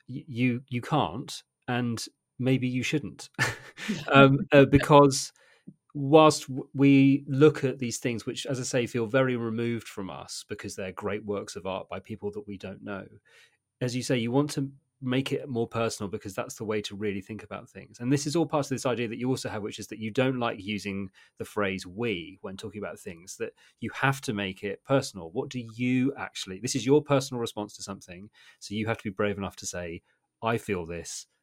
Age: 30-49